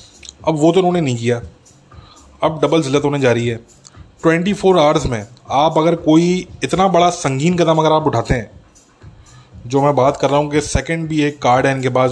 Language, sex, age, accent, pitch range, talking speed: English, male, 20-39, Indian, 115-145 Hz, 200 wpm